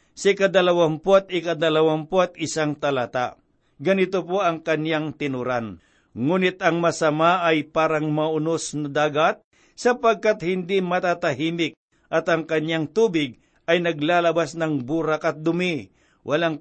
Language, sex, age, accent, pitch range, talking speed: Filipino, male, 50-69, native, 155-190 Hz, 115 wpm